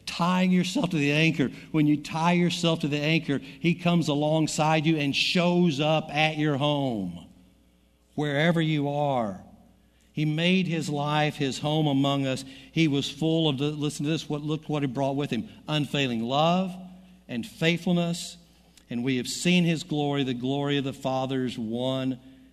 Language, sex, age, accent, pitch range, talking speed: English, male, 60-79, American, 130-160 Hz, 170 wpm